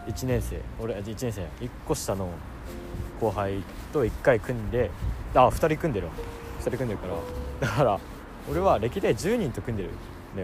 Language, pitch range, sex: Japanese, 85-115 Hz, male